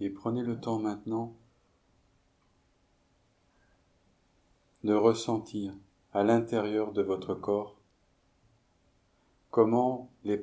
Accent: French